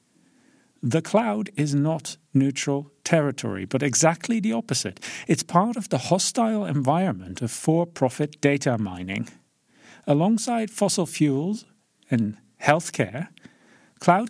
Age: 50-69